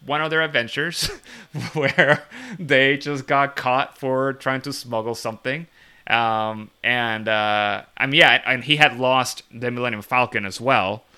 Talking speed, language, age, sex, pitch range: 155 wpm, English, 30-49, male, 105-130 Hz